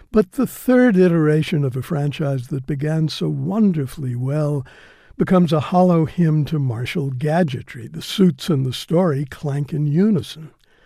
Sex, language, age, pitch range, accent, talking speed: male, English, 60-79, 135-175 Hz, American, 150 wpm